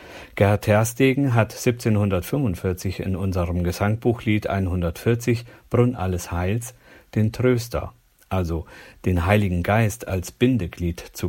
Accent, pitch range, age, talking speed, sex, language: German, 105-165 Hz, 50-69, 105 wpm, male, German